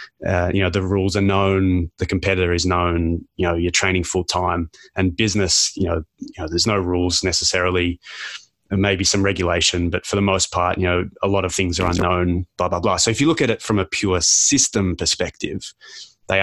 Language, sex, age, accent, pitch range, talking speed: English, male, 20-39, Australian, 90-105 Hz, 215 wpm